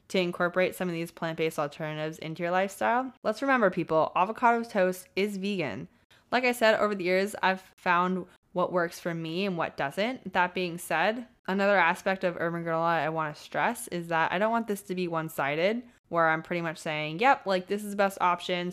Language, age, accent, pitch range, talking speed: English, 20-39, American, 165-200 Hz, 210 wpm